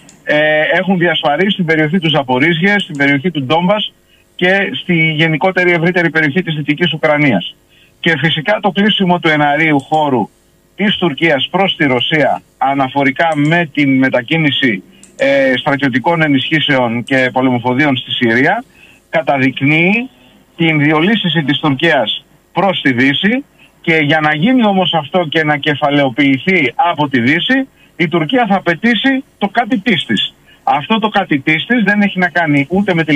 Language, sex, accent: Greek, male, native